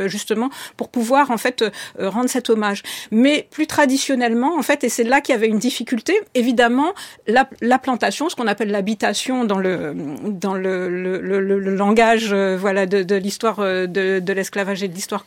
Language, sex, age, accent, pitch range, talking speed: French, female, 50-69, French, 210-265 Hz, 195 wpm